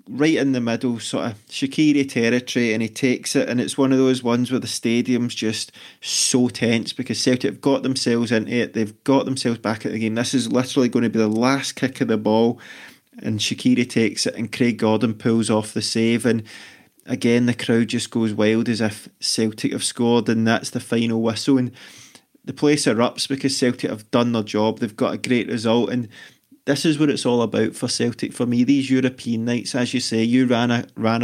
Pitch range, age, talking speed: 115-125 Hz, 20-39, 215 wpm